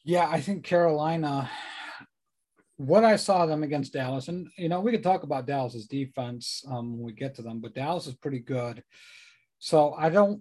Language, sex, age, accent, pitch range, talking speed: English, male, 40-59, American, 135-175 Hz, 190 wpm